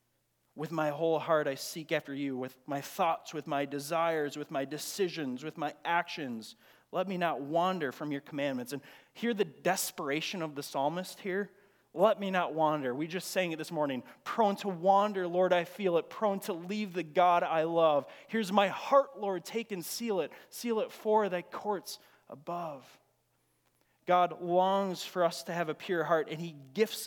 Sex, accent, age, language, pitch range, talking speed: male, American, 30-49, English, 145-185 Hz, 190 wpm